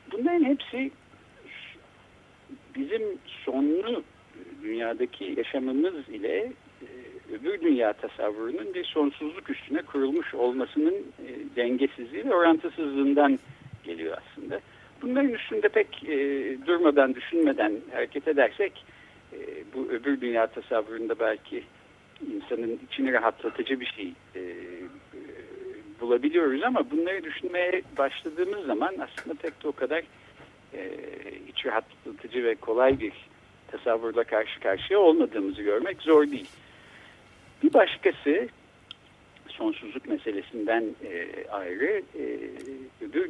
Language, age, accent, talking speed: Turkish, 60-79, native, 95 wpm